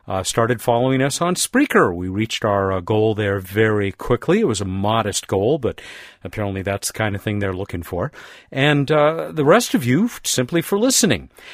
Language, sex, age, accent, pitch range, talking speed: English, male, 50-69, American, 95-125 Hz, 200 wpm